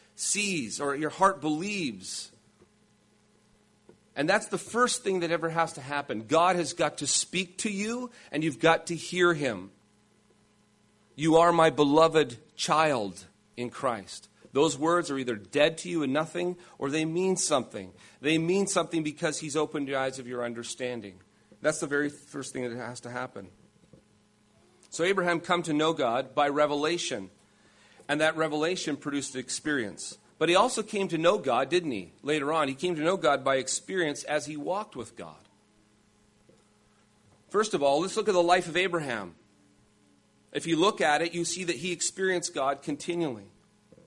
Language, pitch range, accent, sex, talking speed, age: English, 120-170 Hz, American, male, 170 wpm, 40-59